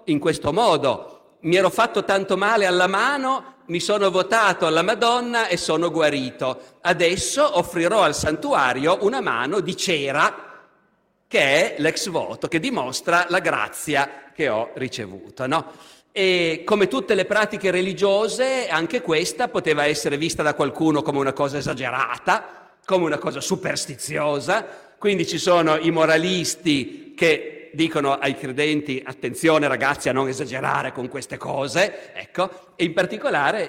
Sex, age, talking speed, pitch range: male, 50-69, 145 wpm, 150-220 Hz